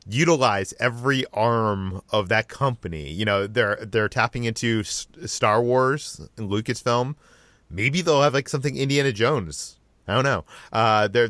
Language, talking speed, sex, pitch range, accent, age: English, 155 wpm, male, 100-135 Hz, American, 30-49